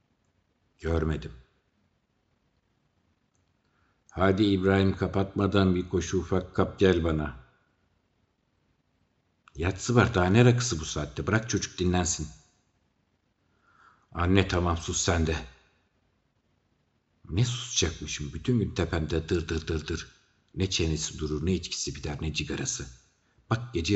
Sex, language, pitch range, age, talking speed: male, Turkish, 75-95 Hz, 60-79, 110 wpm